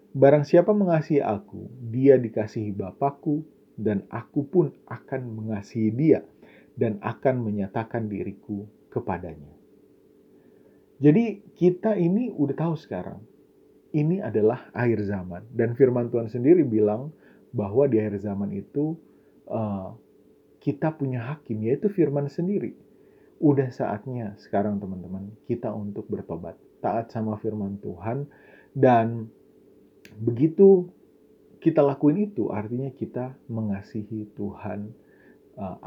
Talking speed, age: 110 wpm, 30-49